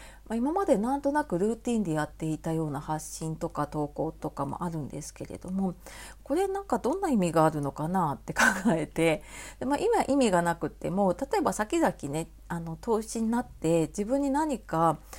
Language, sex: Japanese, female